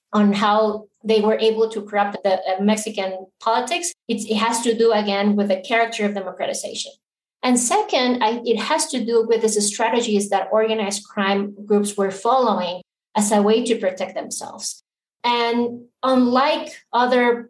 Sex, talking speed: female, 150 wpm